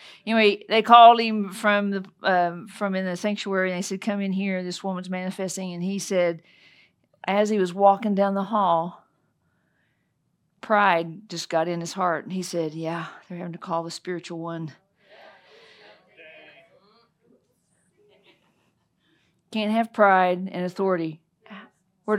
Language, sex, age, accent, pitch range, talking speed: English, female, 50-69, American, 170-205 Hz, 145 wpm